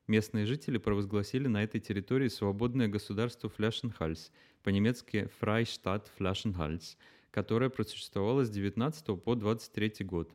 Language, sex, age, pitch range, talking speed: Russian, male, 20-39, 95-115 Hz, 105 wpm